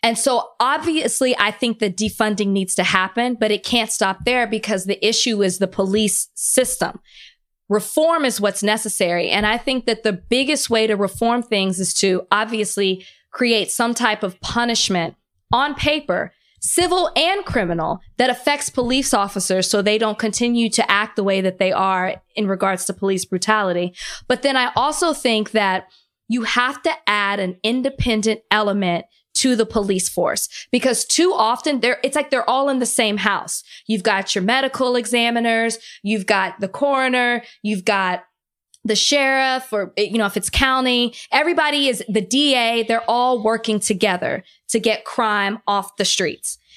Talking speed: 170 wpm